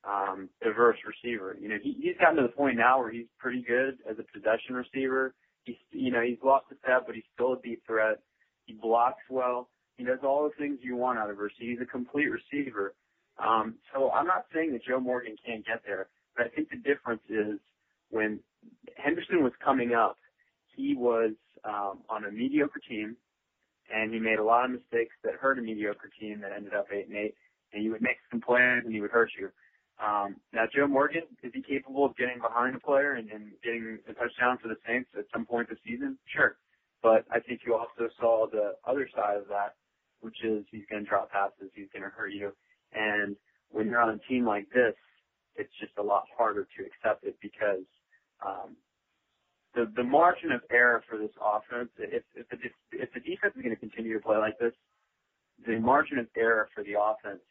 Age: 30-49